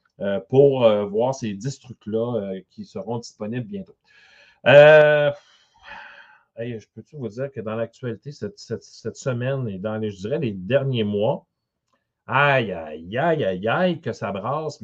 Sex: male